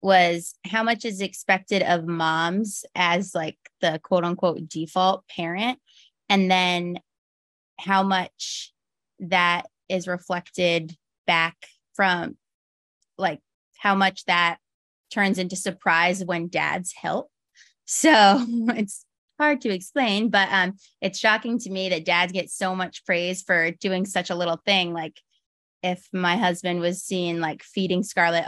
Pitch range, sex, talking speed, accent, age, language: 175-200 Hz, female, 135 wpm, American, 20-39, English